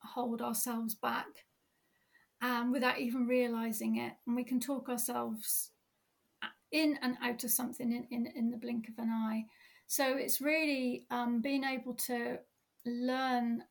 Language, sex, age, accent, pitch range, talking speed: English, female, 40-59, British, 235-265 Hz, 150 wpm